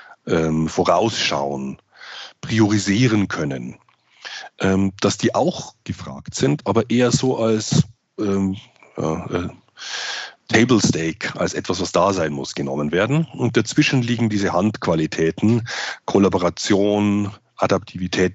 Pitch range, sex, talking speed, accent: 90-115 Hz, male, 105 wpm, German